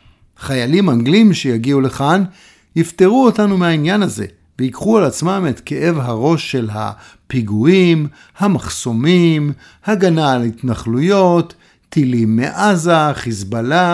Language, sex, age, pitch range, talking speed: Hebrew, male, 50-69, 115-185 Hz, 100 wpm